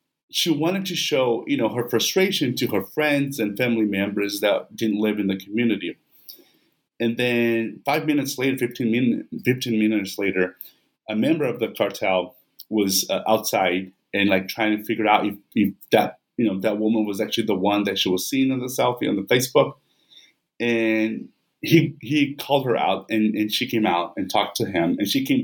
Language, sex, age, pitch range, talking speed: English, male, 30-49, 105-130 Hz, 195 wpm